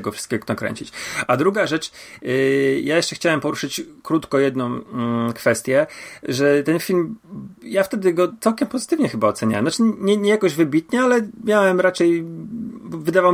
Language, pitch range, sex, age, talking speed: Polish, 135-165 Hz, male, 30-49, 145 wpm